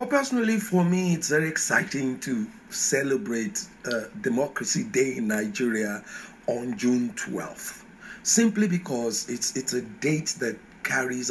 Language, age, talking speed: English, 50-69, 135 wpm